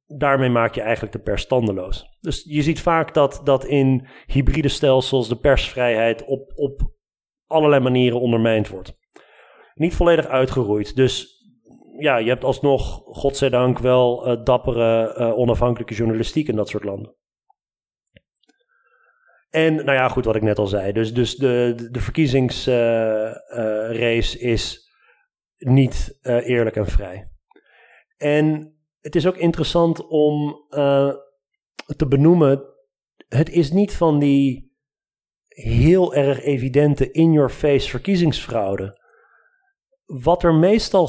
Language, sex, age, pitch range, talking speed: Dutch, male, 40-59, 120-160 Hz, 130 wpm